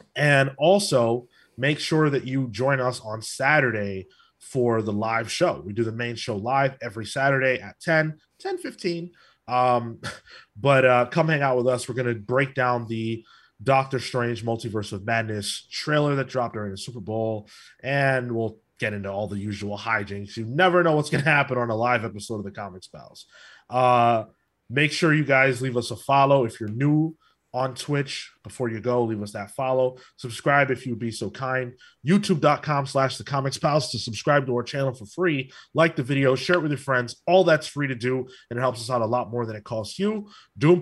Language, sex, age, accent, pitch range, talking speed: English, male, 20-39, American, 115-140 Hz, 205 wpm